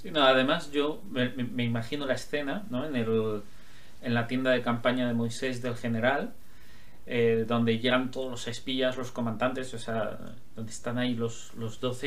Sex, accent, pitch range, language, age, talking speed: male, Spanish, 120-180 Hz, Spanish, 30-49, 180 wpm